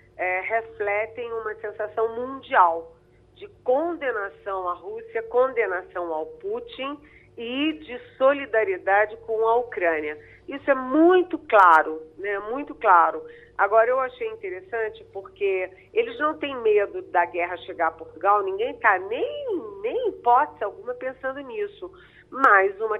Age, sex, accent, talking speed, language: 40-59, female, Brazilian, 125 wpm, Portuguese